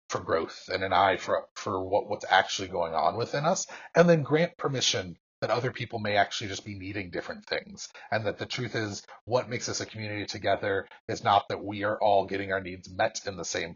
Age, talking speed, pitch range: 30-49, 225 wpm, 100-120 Hz